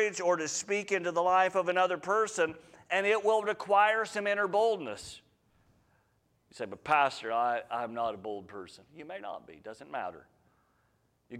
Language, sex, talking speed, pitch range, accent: English, male, 175 wpm, 120-155 Hz, American